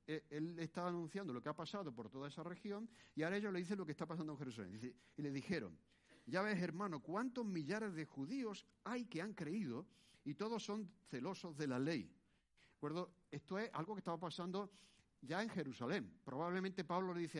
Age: 60-79